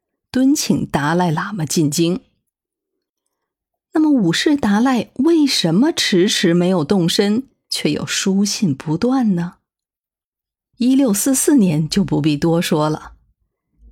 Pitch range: 170-250 Hz